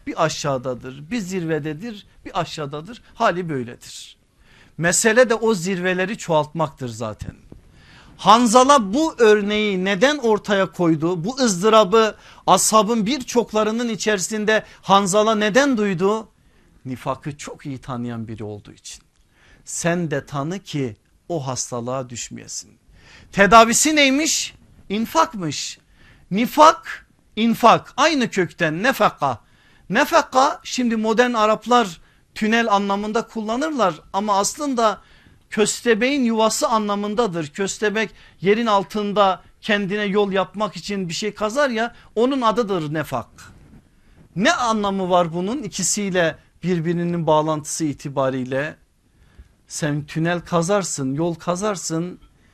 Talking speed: 100 wpm